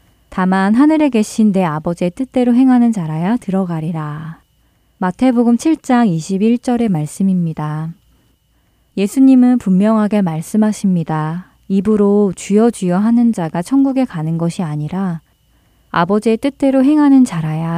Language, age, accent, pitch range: Korean, 20-39, native, 165-230 Hz